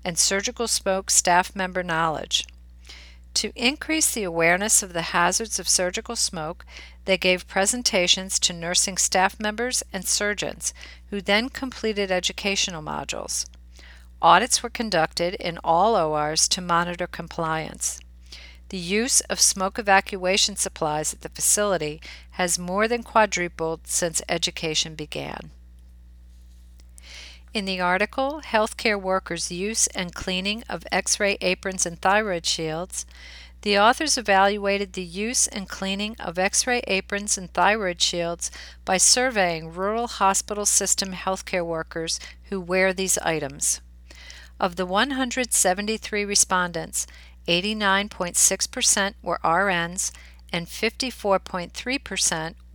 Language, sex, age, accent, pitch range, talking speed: English, female, 50-69, American, 160-205 Hz, 115 wpm